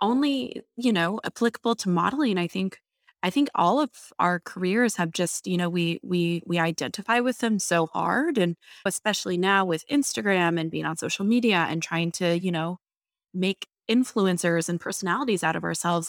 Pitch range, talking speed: 170-225 Hz, 180 wpm